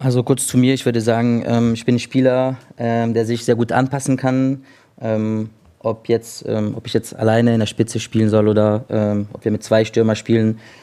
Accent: German